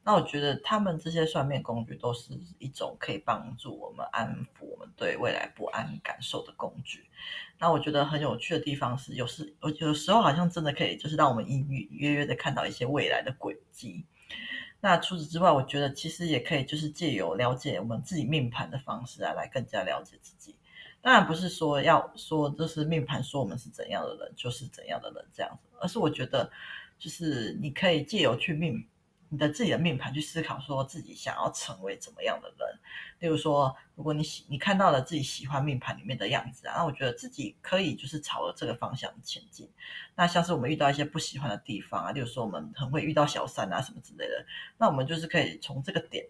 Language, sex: Chinese, female